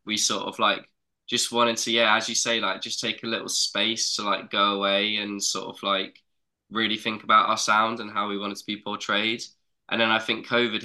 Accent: British